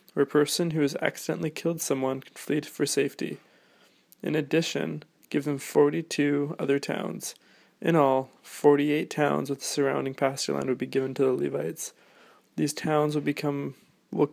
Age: 20-39